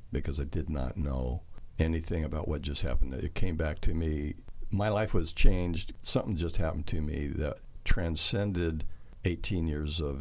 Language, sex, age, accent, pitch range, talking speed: English, male, 60-79, American, 80-100 Hz, 170 wpm